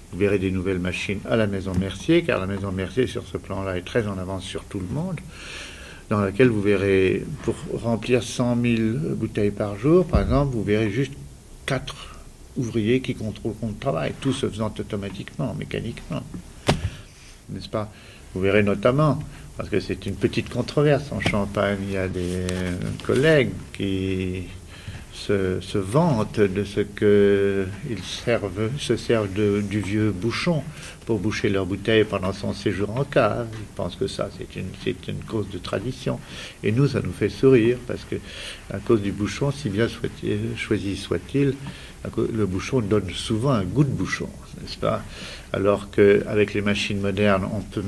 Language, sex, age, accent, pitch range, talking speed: French, male, 50-69, French, 95-115 Hz, 175 wpm